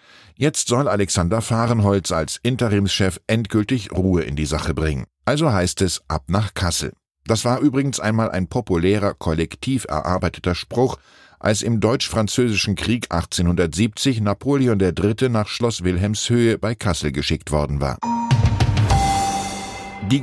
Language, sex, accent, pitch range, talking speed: German, male, German, 90-120 Hz, 130 wpm